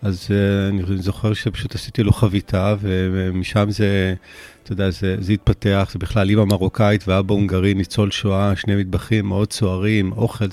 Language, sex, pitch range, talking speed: Hebrew, male, 95-115 Hz, 160 wpm